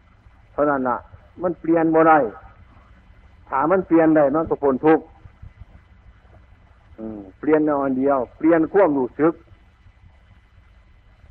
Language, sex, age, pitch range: Chinese, male, 60-79, 95-145 Hz